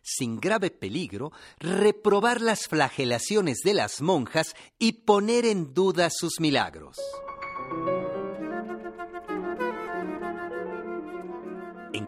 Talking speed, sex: 80 wpm, male